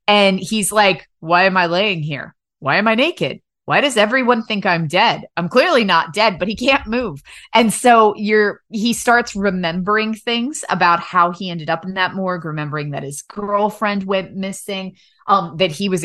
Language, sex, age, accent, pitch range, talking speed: English, female, 20-39, American, 165-210 Hz, 195 wpm